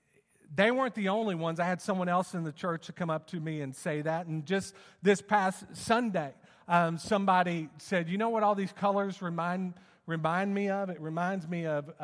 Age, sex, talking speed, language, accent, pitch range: 40-59, male, 210 wpm, English, American, 150-190 Hz